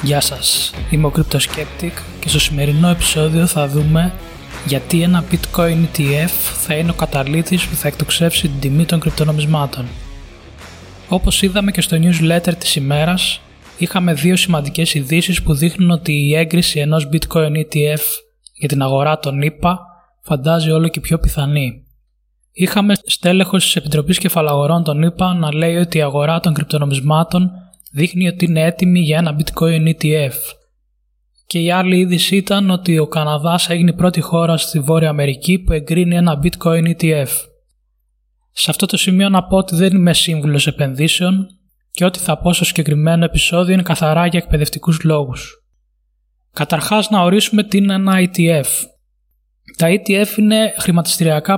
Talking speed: 150 wpm